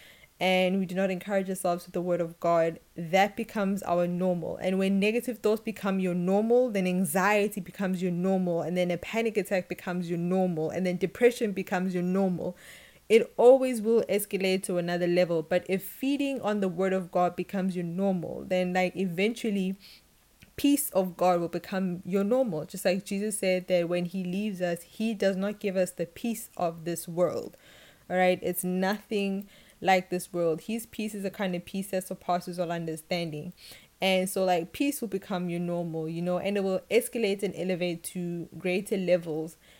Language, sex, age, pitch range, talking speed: English, female, 20-39, 175-195 Hz, 185 wpm